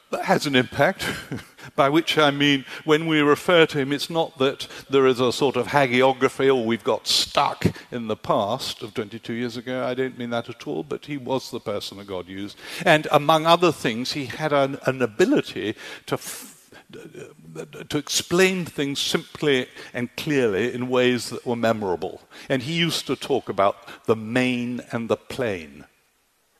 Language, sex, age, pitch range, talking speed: English, male, 60-79, 120-150 Hz, 180 wpm